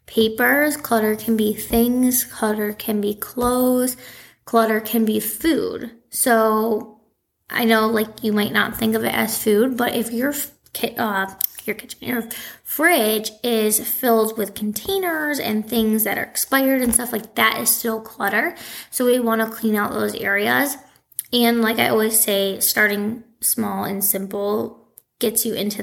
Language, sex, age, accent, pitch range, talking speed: English, female, 20-39, American, 210-235 Hz, 165 wpm